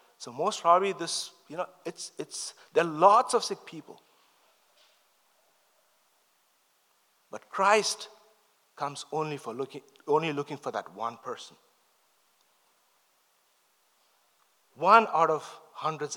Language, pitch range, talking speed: English, 150-220 Hz, 110 wpm